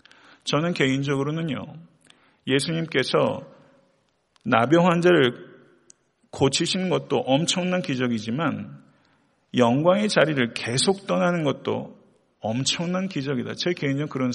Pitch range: 130-175 Hz